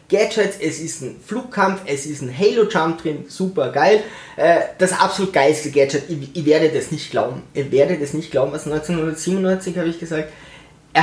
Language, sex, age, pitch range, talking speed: German, male, 20-39, 150-190 Hz, 190 wpm